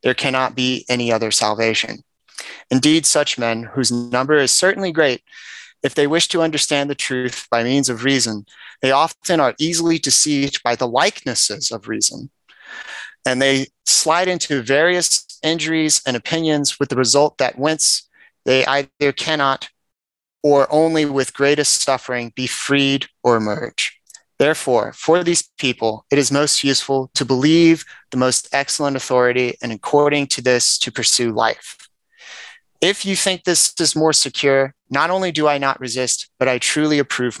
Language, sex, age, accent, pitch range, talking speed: English, male, 30-49, American, 130-160 Hz, 155 wpm